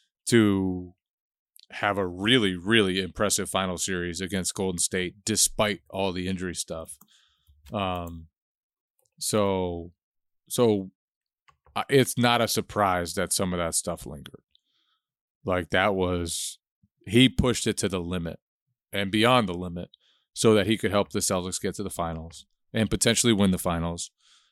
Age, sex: 30-49, male